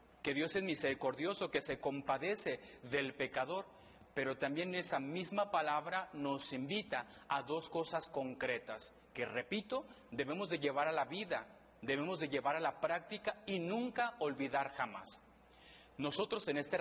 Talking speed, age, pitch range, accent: 145 wpm, 40-59, 140-175 Hz, Mexican